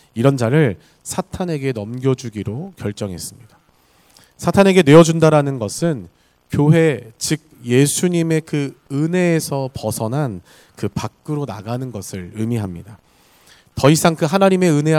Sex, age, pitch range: male, 40-59, 115-160 Hz